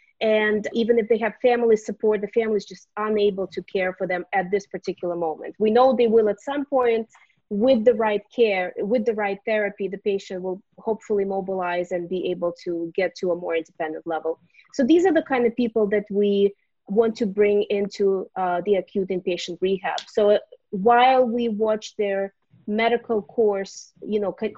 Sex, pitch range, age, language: female, 190-230 Hz, 30-49, English